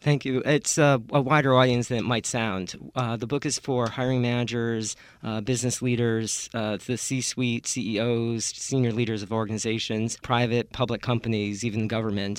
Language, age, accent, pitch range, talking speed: English, 40-59, American, 105-115 Hz, 165 wpm